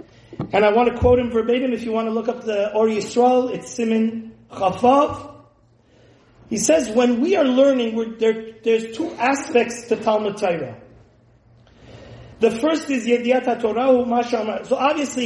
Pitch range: 200-250 Hz